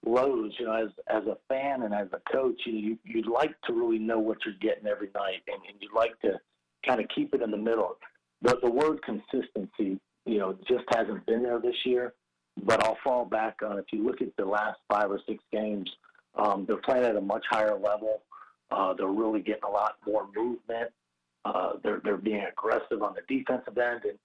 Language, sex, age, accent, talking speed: English, male, 50-69, American, 220 wpm